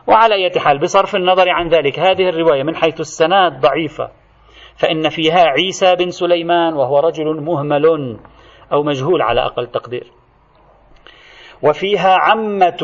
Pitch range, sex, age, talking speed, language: 140-180 Hz, male, 40-59, 125 wpm, Arabic